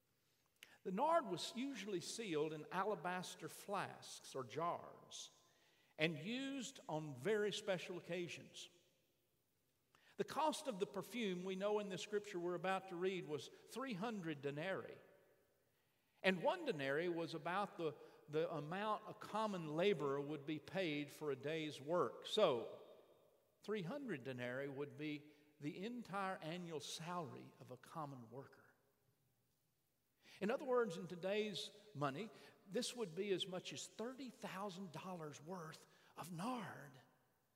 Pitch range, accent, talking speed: 155-215 Hz, American, 130 wpm